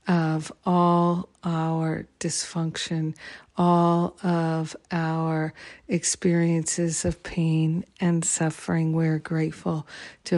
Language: English